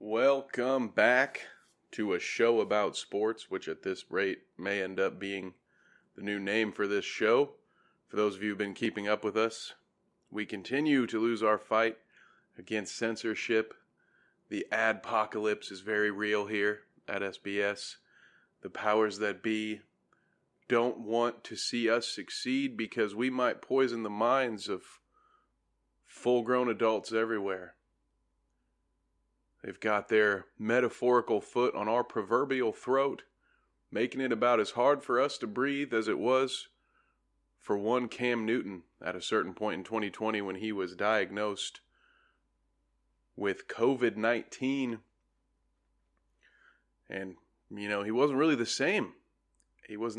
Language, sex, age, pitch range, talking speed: English, male, 30-49, 105-125 Hz, 135 wpm